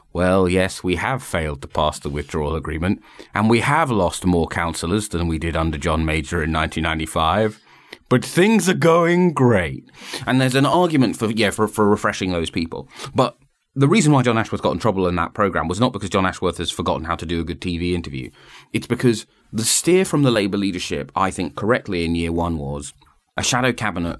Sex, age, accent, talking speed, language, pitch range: male, 30-49, British, 210 wpm, English, 85-110 Hz